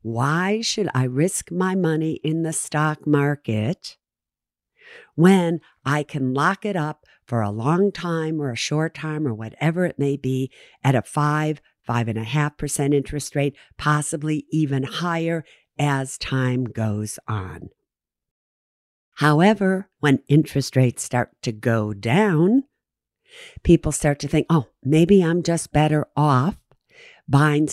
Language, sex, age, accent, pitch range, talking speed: English, female, 50-69, American, 125-160 Hz, 140 wpm